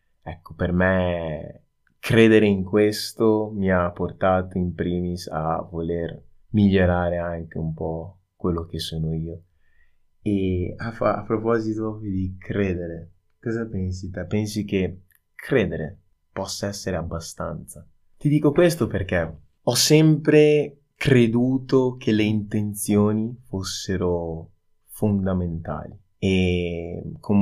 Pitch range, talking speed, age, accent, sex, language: 85-100 Hz, 105 wpm, 20-39, native, male, Italian